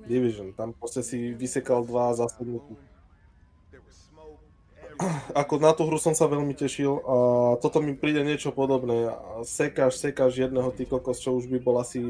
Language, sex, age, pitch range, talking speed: Slovak, male, 20-39, 110-130 Hz, 160 wpm